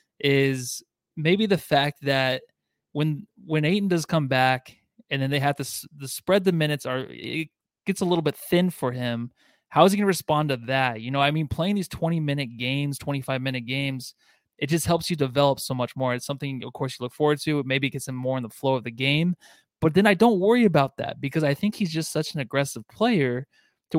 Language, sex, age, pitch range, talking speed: English, male, 20-39, 135-165 Hz, 230 wpm